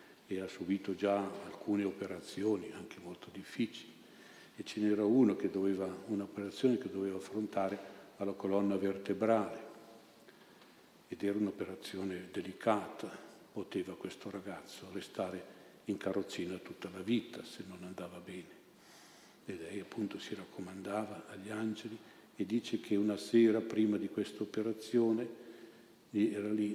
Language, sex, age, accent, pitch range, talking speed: Italian, male, 50-69, native, 100-115 Hz, 125 wpm